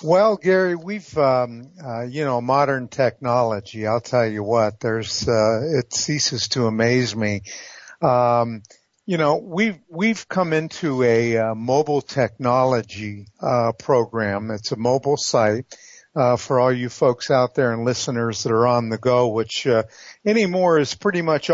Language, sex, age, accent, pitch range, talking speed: English, male, 50-69, American, 120-165 Hz, 160 wpm